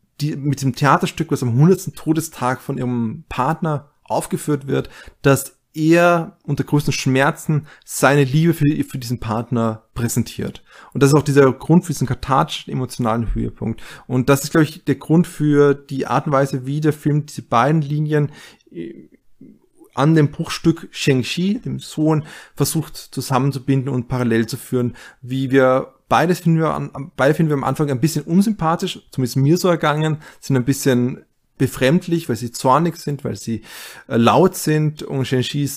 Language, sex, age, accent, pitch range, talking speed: German, male, 30-49, German, 125-155 Hz, 165 wpm